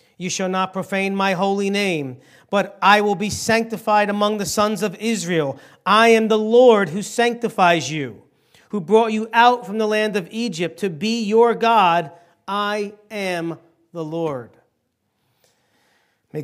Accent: American